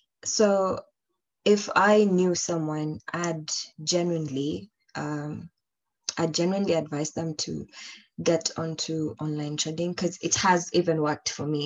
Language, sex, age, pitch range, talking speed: English, female, 20-39, 155-180 Hz, 125 wpm